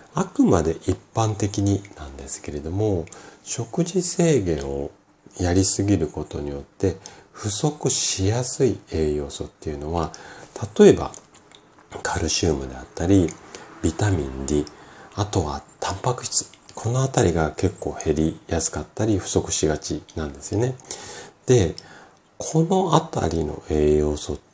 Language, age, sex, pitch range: Japanese, 40-59, male, 75-100 Hz